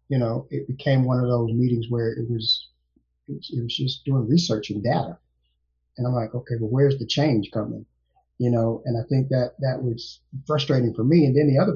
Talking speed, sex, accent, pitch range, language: 215 wpm, male, American, 115-135 Hz, English